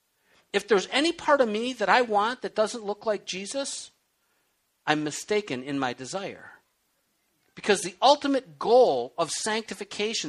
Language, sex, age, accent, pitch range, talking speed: English, male, 50-69, American, 195-270 Hz, 145 wpm